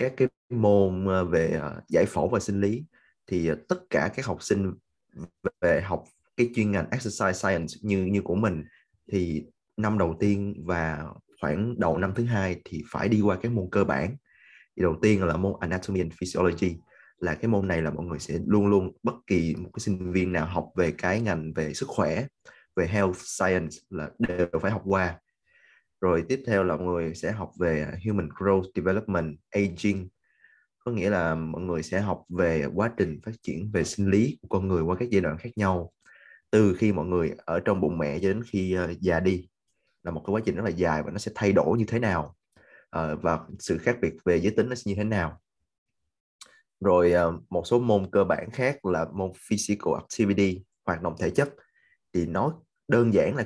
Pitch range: 85-105 Hz